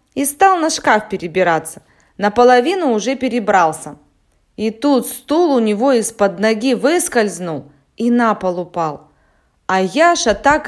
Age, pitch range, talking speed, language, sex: 20-39, 195-265 Hz, 130 wpm, Russian, female